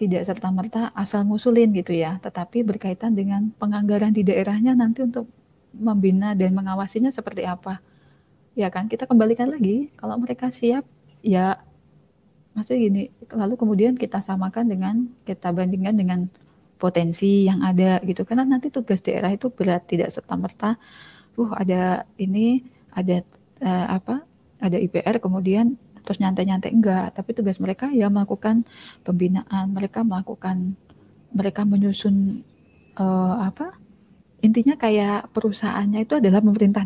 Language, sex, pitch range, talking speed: Indonesian, female, 190-230 Hz, 130 wpm